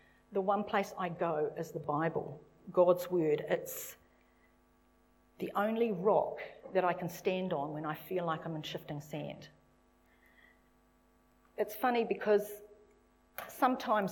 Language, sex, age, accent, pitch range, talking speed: English, female, 40-59, Australian, 170-215 Hz, 130 wpm